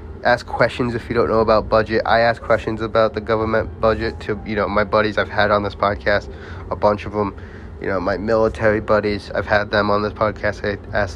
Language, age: English, 20-39